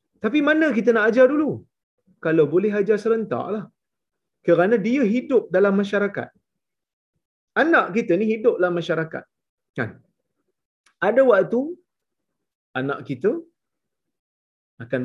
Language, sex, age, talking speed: Malayalam, male, 30-49, 110 wpm